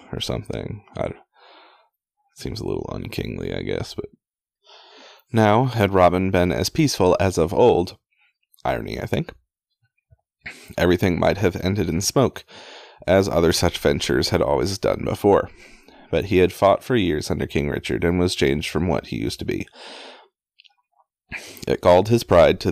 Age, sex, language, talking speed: 30-49, male, English, 160 wpm